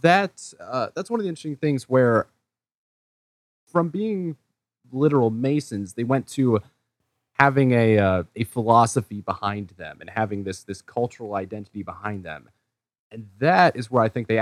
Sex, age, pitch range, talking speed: male, 20-39, 95-120 Hz, 160 wpm